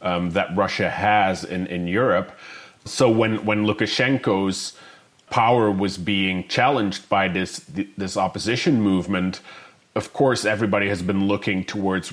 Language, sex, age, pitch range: English, male, 30-49, 95-110 Hz